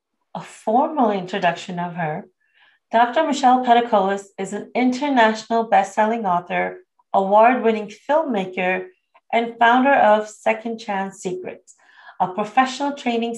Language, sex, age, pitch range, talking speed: English, female, 40-59, 200-255 Hz, 110 wpm